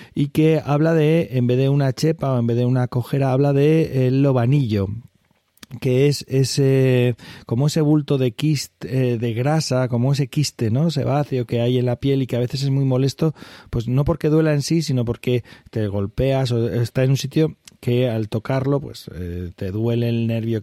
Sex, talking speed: male, 210 wpm